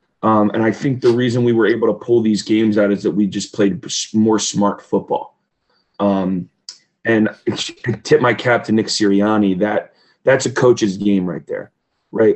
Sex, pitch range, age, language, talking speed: male, 100-115 Hz, 30-49, English, 190 wpm